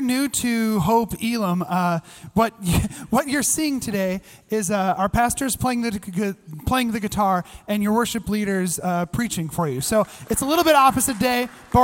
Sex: male